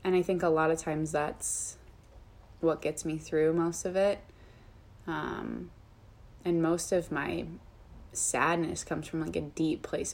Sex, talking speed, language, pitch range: female, 160 wpm, English, 110-180 Hz